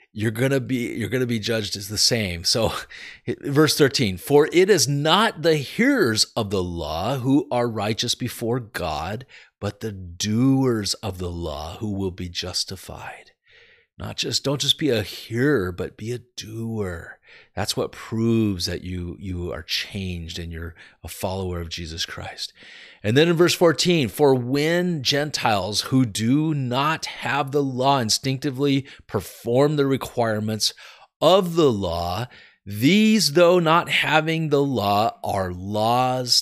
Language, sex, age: English, male, 40-59